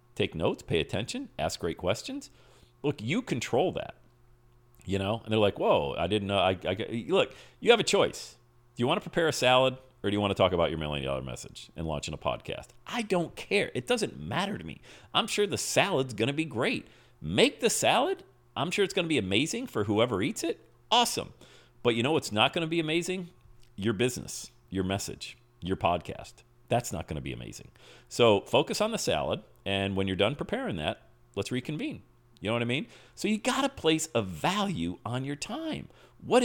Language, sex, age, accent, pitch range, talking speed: English, male, 40-59, American, 110-160 Hz, 215 wpm